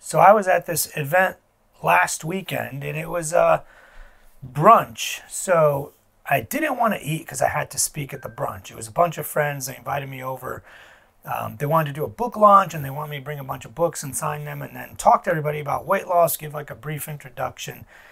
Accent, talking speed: American, 235 wpm